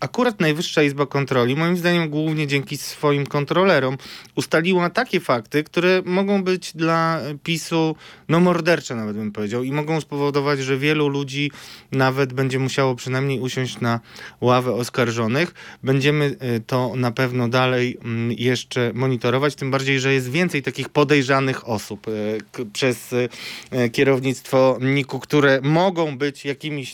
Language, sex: Polish, male